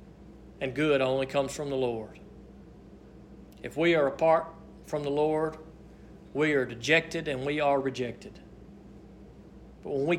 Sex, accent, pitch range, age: male, American, 135-175 Hz, 40-59